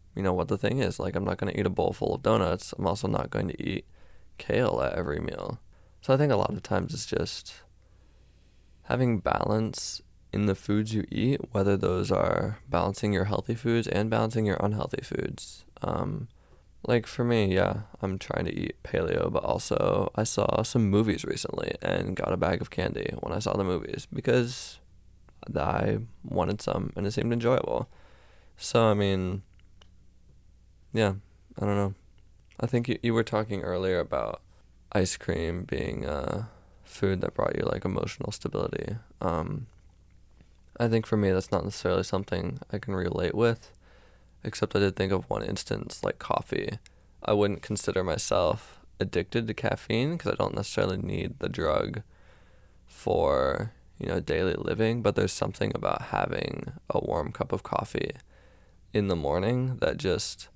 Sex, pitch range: male, 90-110 Hz